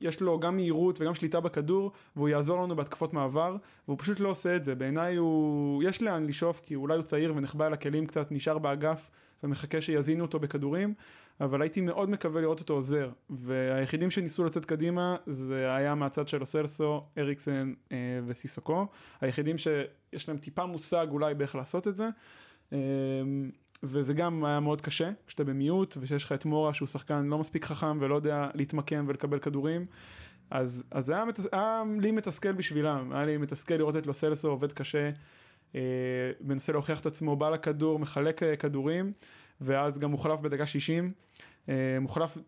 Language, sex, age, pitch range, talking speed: Hebrew, male, 20-39, 140-160 Hz, 160 wpm